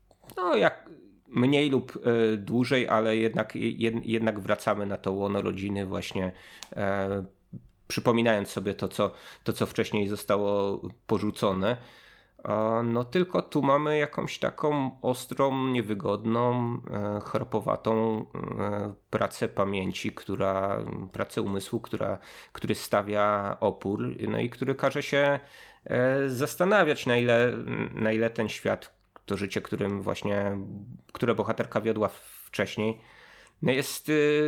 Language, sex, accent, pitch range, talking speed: Polish, male, native, 100-130 Hz, 105 wpm